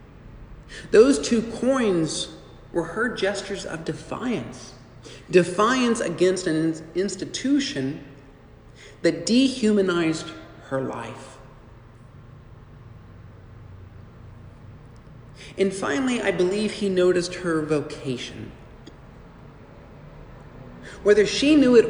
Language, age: English, 50-69